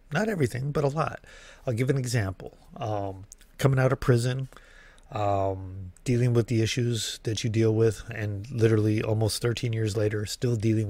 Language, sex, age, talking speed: English, male, 30-49, 170 wpm